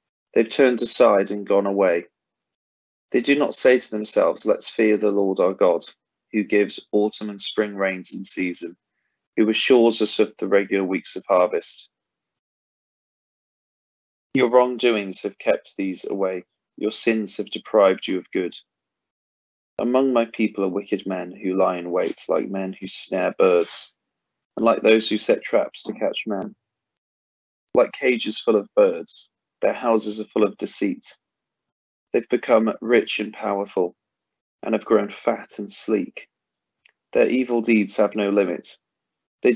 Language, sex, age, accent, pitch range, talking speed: English, male, 30-49, British, 95-115 Hz, 155 wpm